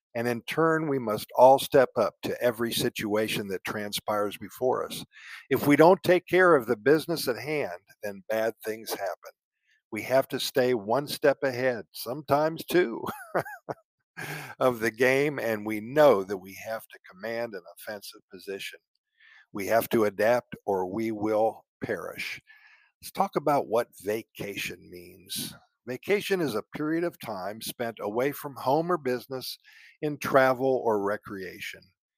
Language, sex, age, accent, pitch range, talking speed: Italian, male, 50-69, American, 120-160 Hz, 155 wpm